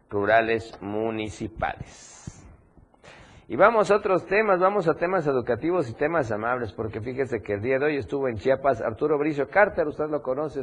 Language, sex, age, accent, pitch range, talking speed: Spanish, male, 50-69, Mexican, 110-140 Hz, 170 wpm